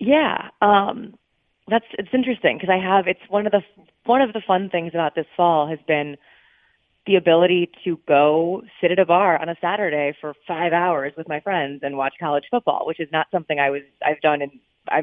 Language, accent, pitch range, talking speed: English, American, 145-185 Hz, 210 wpm